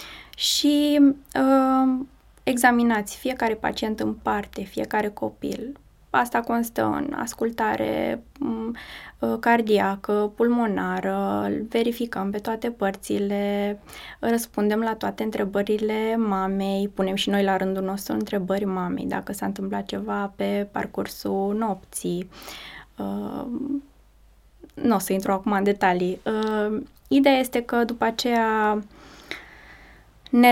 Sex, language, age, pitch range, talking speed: female, Romanian, 20-39, 195-235 Hz, 100 wpm